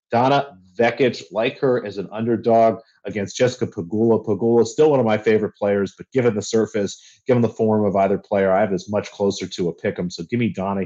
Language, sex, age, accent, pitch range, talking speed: English, male, 30-49, American, 95-110 Hz, 220 wpm